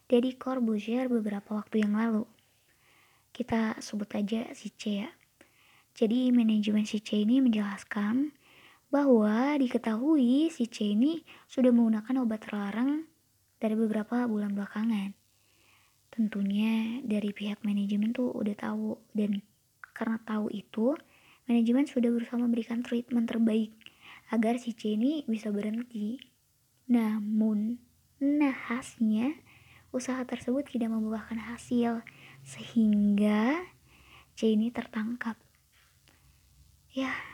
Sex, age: male, 20-39